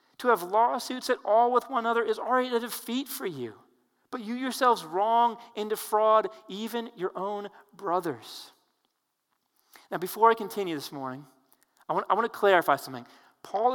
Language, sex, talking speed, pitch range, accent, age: English, male, 160 wpm, 150-195 Hz, American, 40-59